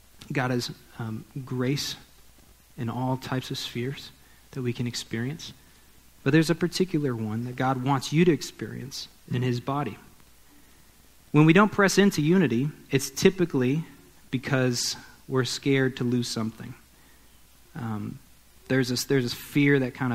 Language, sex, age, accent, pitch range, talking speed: English, male, 40-59, American, 115-140 Hz, 145 wpm